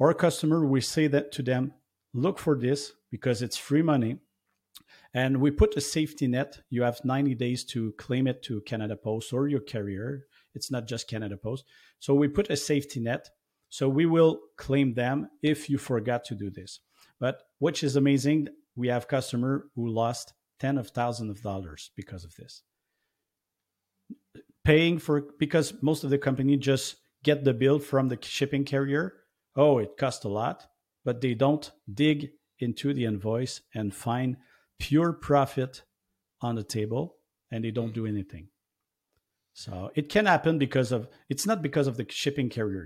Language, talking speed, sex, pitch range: English, 175 wpm, male, 115-145 Hz